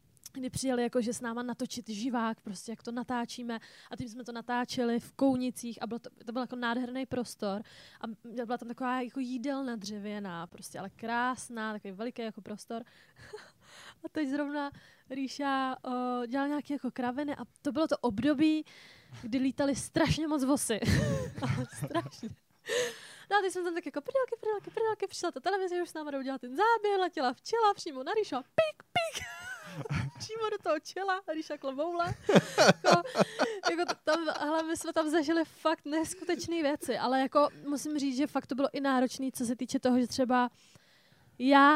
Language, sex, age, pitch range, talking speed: Czech, female, 20-39, 240-300 Hz, 170 wpm